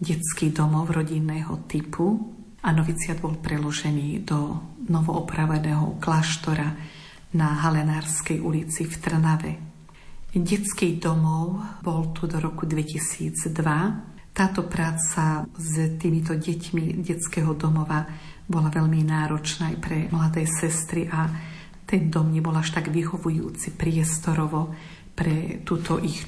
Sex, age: female, 50-69